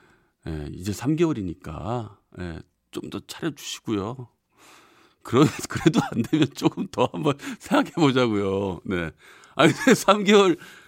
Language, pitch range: Korean, 105-175 Hz